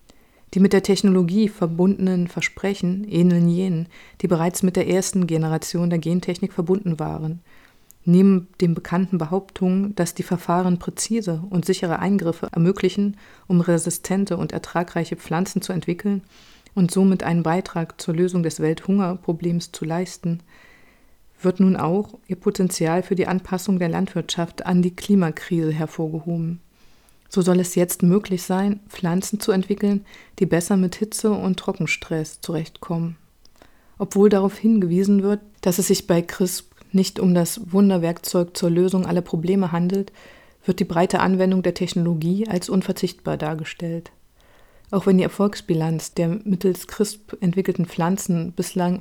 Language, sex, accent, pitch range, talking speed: German, female, German, 170-195 Hz, 140 wpm